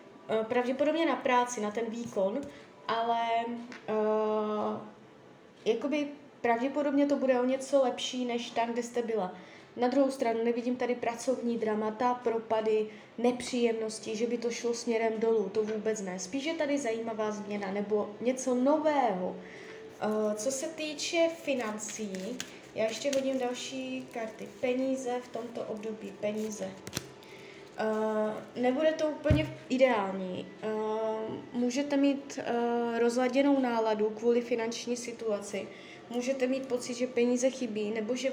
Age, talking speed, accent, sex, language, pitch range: 20-39, 130 wpm, native, female, Czech, 220-265 Hz